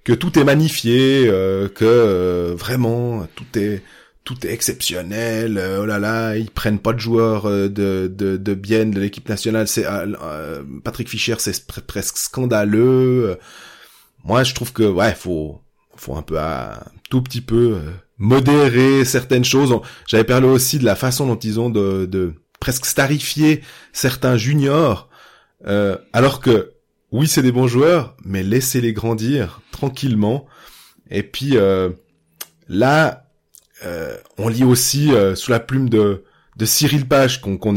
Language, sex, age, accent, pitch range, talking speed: French, male, 20-39, French, 105-130 Hz, 165 wpm